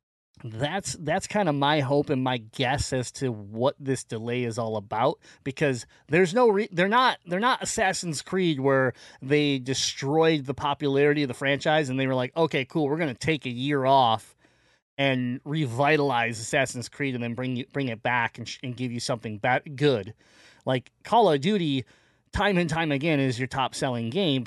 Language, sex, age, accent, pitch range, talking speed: English, male, 30-49, American, 120-145 Hz, 195 wpm